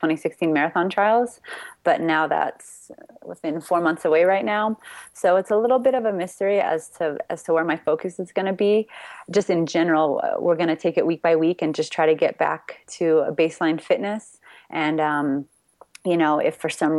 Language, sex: English, female